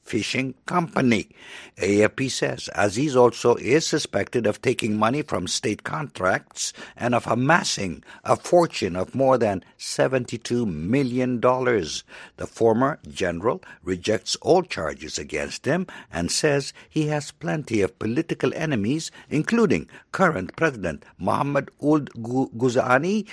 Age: 60-79